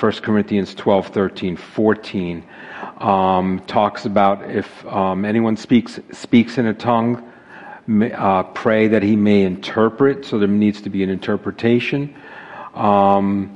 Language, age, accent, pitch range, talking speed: English, 50-69, American, 105-125 Hz, 135 wpm